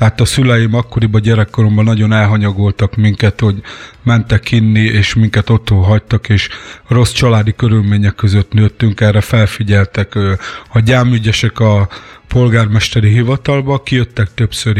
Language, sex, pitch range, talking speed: Hungarian, male, 100-120 Hz, 120 wpm